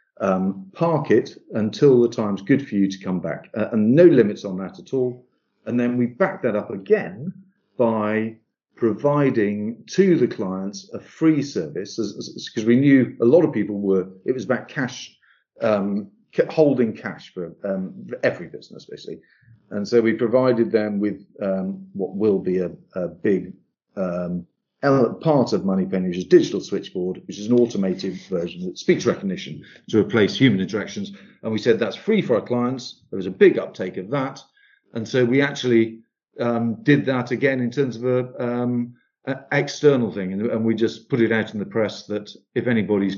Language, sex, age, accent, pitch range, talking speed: English, male, 50-69, British, 100-135 Hz, 185 wpm